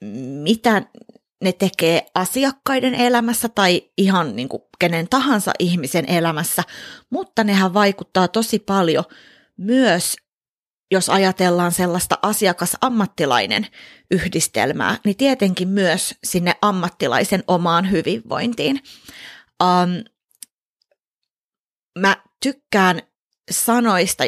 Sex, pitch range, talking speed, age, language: female, 175-225 Hz, 85 wpm, 30-49, Finnish